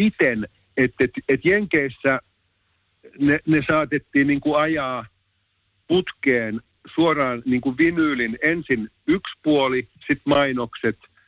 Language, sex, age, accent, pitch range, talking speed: Finnish, male, 50-69, native, 110-140 Hz, 80 wpm